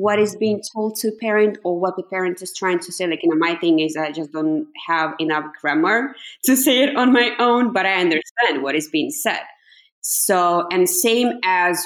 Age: 20-39